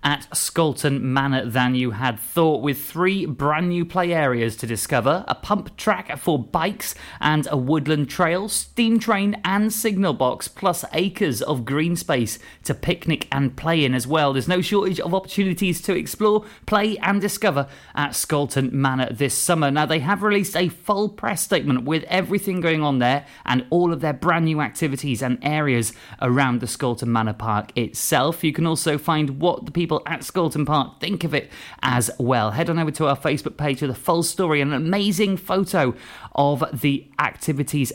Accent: British